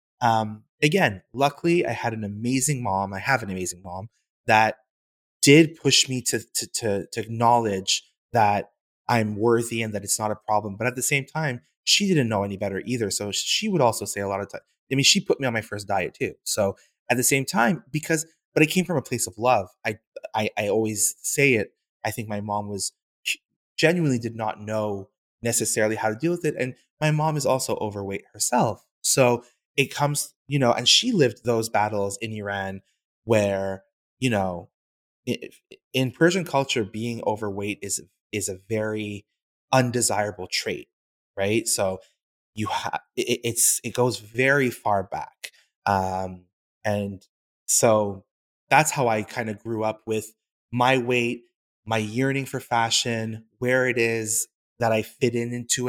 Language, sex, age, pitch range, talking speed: English, male, 20-39, 105-130 Hz, 175 wpm